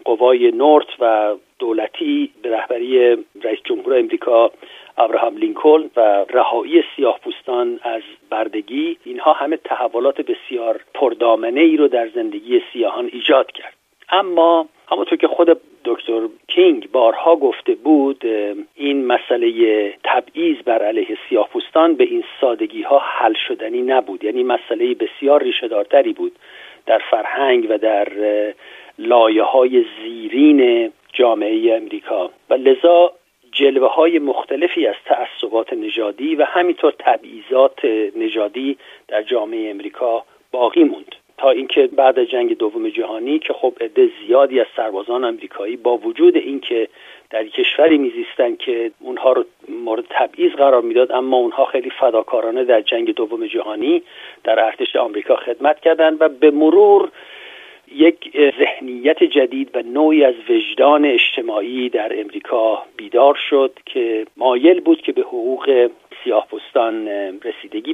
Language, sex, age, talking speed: Persian, male, 50-69, 125 wpm